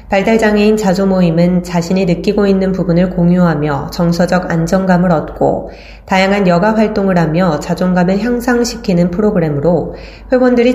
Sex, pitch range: female, 165-210 Hz